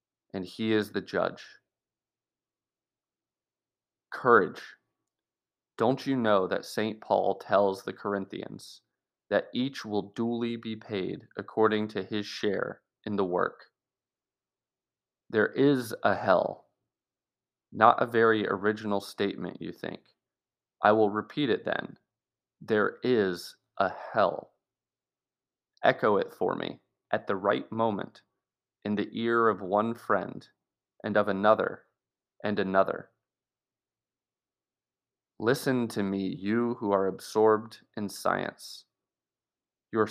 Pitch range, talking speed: 100-115 Hz, 115 wpm